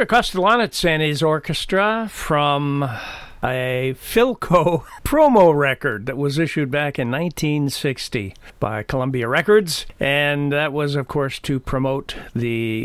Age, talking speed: 50-69, 120 wpm